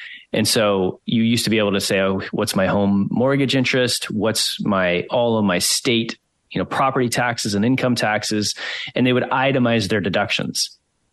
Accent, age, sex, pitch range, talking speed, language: American, 30-49, male, 105-125 Hz, 185 wpm, English